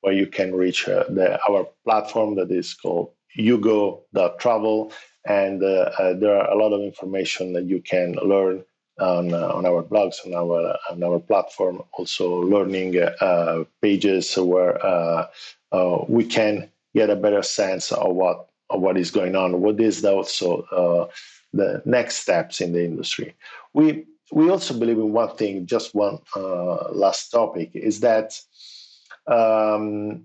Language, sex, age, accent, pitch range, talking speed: English, male, 50-69, Italian, 95-115 Hz, 160 wpm